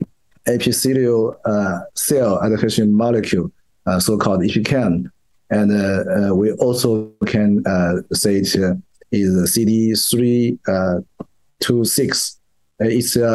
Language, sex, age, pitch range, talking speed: English, male, 50-69, 105-125 Hz, 105 wpm